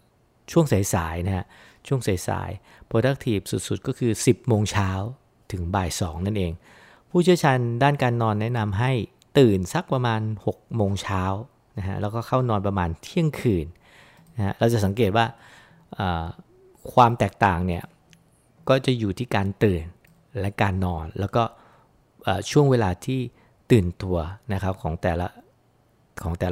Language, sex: English, male